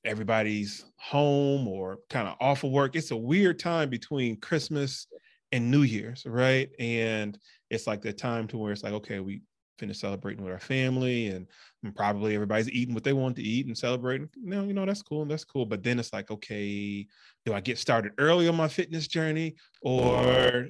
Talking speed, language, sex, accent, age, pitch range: 195 wpm, English, male, American, 20-39, 110-135 Hz